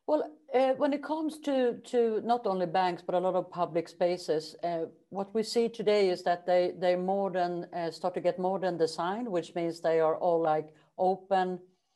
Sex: female